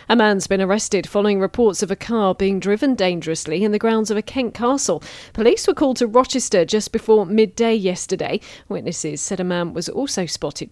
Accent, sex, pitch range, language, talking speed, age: British, female, 185-235 Hz, English, 195 wpm, 40-59